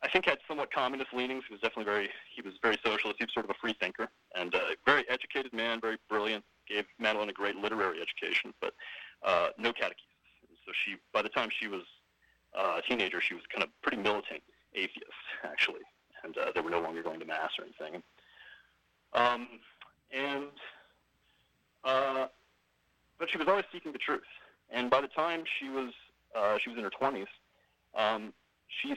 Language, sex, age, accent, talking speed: English, male, 30-49, American, 190 wpm